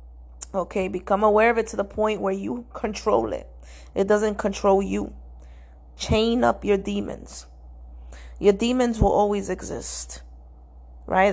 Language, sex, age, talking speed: English, female, 20-39, 140 wpm